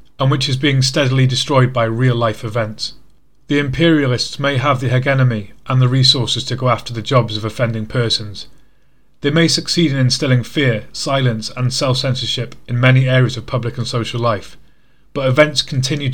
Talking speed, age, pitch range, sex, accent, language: 170 wpm, 30-49, 115-140 Hz, male, British, English